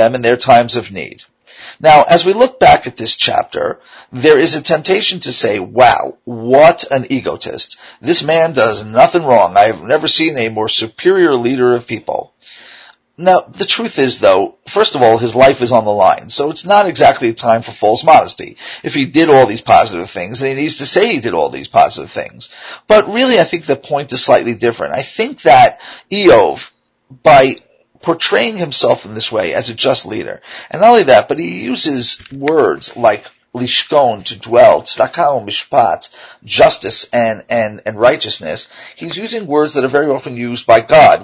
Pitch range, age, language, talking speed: 120-180 Hz, 40-59, English, 190 wpm